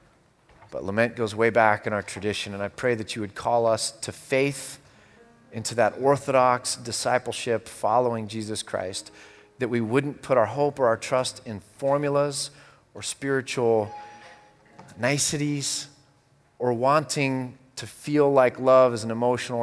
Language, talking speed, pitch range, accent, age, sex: English, 145 wpm, 105-125 Hz, American, 30-49, male